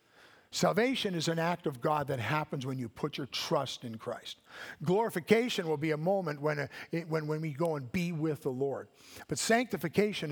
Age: 50-69